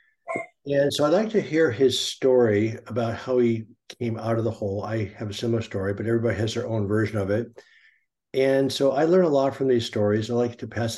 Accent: American